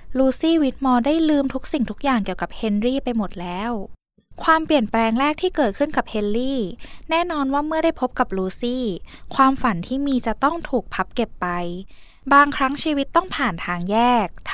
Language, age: Thai, 10-29